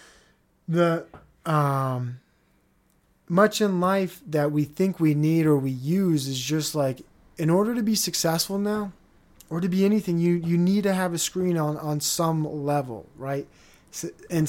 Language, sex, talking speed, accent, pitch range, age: English, male, 160 wpm, American, 130-165 Hz, 20-39